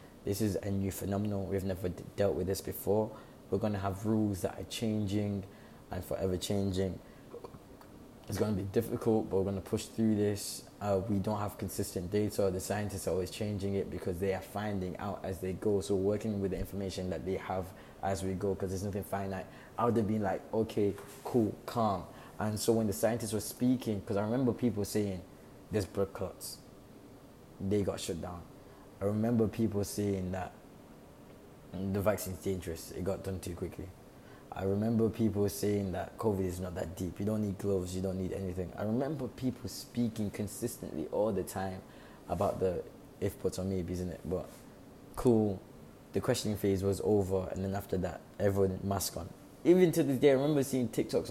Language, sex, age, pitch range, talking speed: English, male, 20-39, 95-105 Hz, 190 wpm